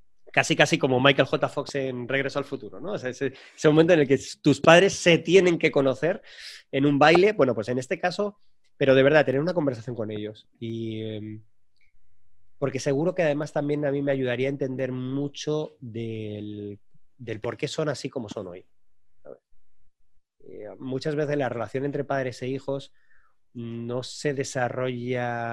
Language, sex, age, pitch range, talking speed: Spanish, male, 30-49, 115-145 Hz, 175 wpm